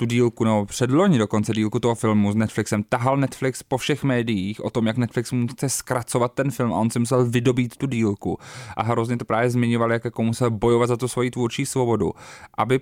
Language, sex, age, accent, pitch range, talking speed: Czech, male, 20-39, native, 110-125 Hz, 210 wpm